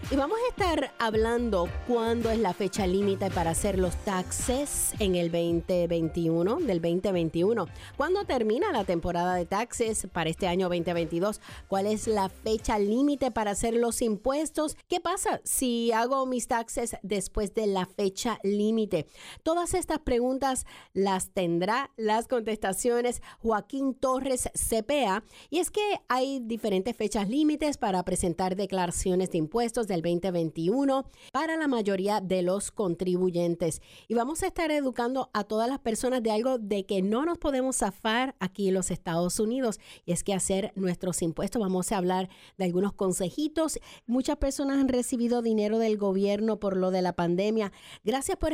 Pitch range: 185-255 Hz